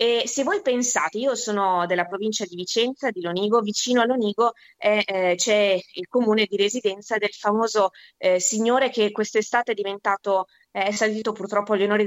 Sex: female